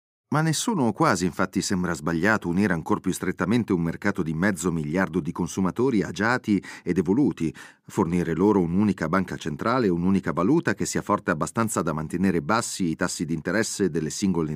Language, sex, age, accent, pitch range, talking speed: Italian, male, 40-59, native, 85-115 Hz, 165 wpm